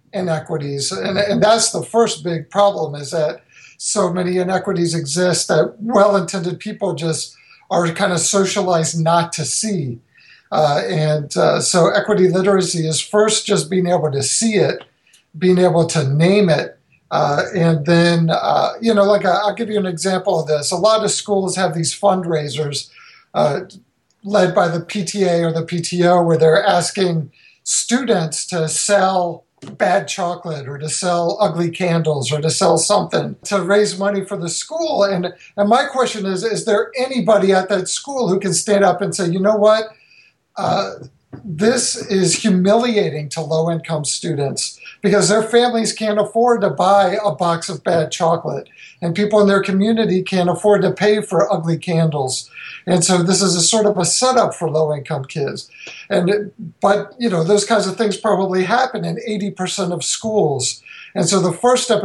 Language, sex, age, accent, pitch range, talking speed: English, male, 50-69, American, 165-205 Hz, 175 wpm